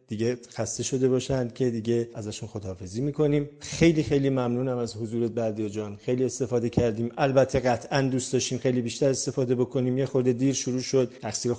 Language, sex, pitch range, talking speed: Persian, male, 115-135 Hz, 170 wpm